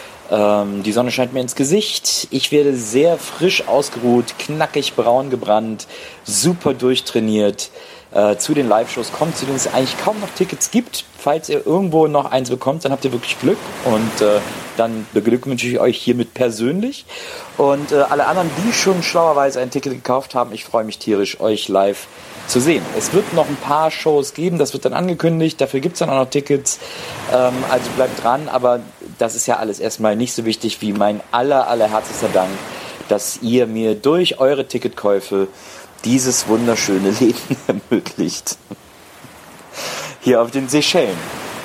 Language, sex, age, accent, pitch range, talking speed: German, male, 40-59, German, 110-155 Hz, 170 wpm